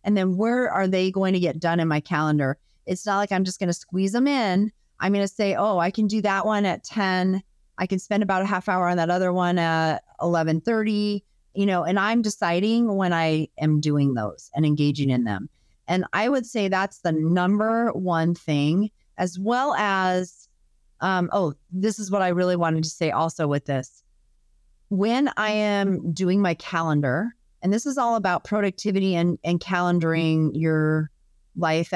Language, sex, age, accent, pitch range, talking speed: English, female, 30-49, American, 155-195 Hz, 195 wpm